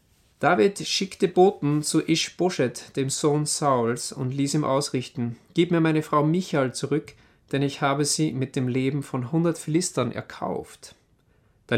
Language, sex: German, male